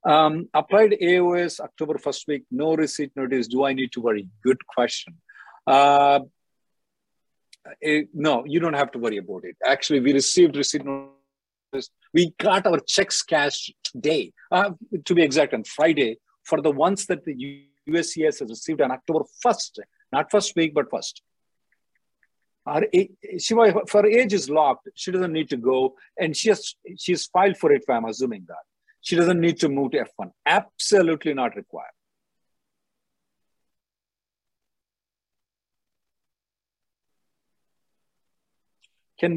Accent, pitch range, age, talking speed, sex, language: Indian, 140-190 Hz, 50-69, 140 wpm, male, English